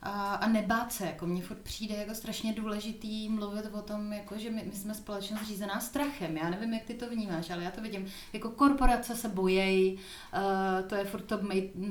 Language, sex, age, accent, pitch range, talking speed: Czech, female, 30-49, native, 210-240 Hz, 205 wpm